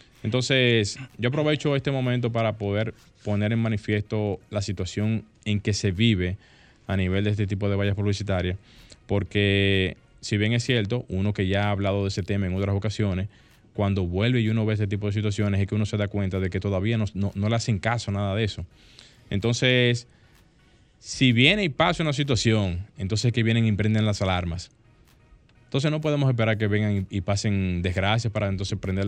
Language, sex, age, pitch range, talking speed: Spanish, male, 20-39, 100-115 Hz, 195 wpm